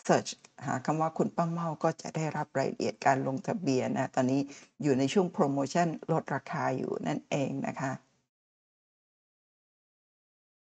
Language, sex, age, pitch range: Thai, female, 60-79, 140-185 Hz